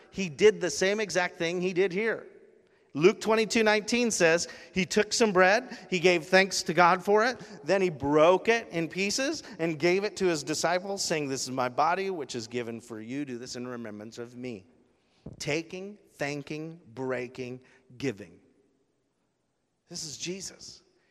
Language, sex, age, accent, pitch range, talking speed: English, male, 40-59, American, 125-180 Hz, 170 wpm